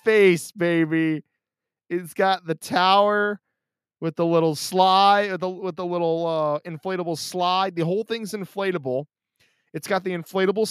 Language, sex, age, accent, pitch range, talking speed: English, male, 20-39, American, 160-200 Hz, 135 wpm